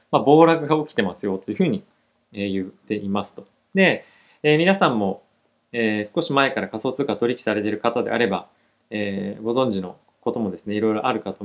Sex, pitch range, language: male, 110-165 Hz, Japanese